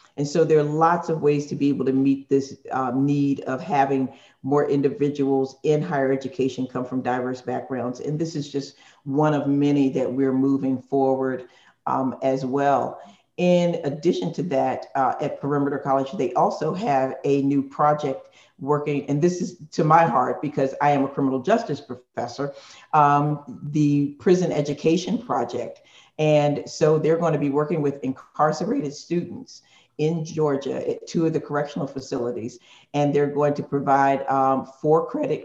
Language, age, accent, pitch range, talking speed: English, 50-69, American, 135-155 Hz, 165 wpm